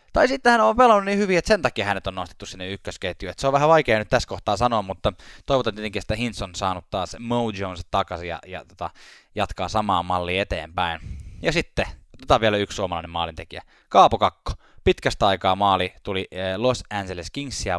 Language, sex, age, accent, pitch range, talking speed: Finnish, male, 10-29, native, 90-115 Hz, 190 wpm